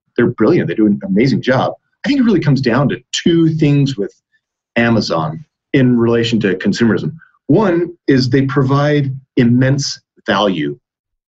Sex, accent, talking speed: male, American, 150 wpm